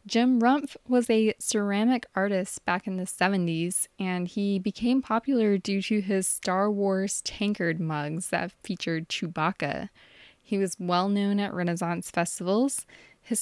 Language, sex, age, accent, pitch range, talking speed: English, female, 10-29, American, 175-205 Hz, 140 wpm